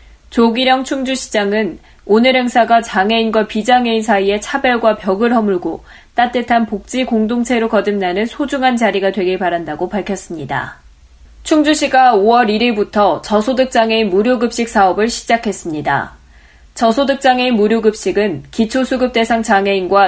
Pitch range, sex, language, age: 195-245 Hz, female, Korean, 20-39